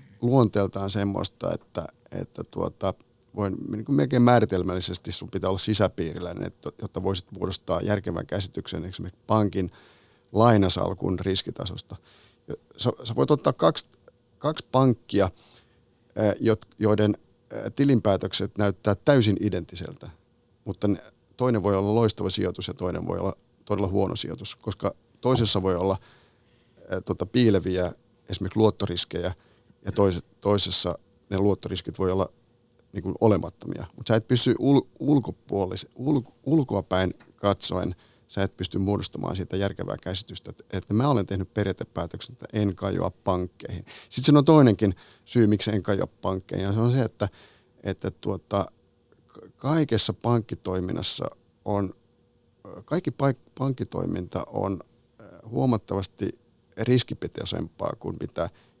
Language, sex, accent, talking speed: Finnish, male, native, 115 wpm